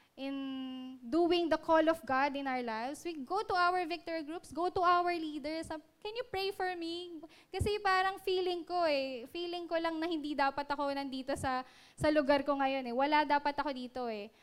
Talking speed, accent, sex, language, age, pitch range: 205 wpm, native, female, Filipino, 10-29, 265-345 Hz